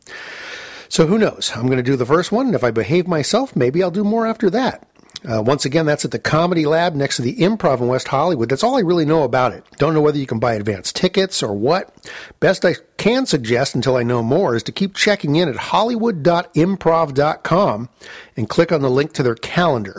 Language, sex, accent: English, male, American